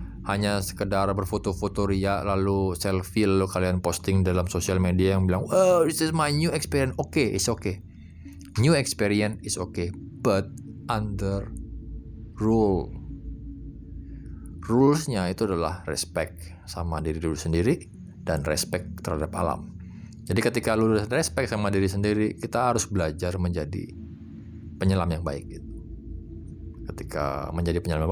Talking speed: 130 wpm